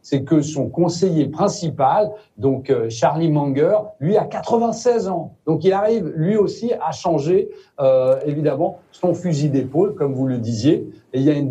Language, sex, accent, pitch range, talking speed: French, male, French, 150-200 Hz, 170 wpm